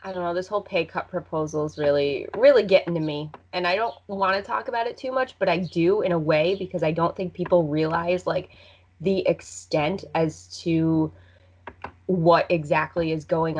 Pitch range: 150-180 Hz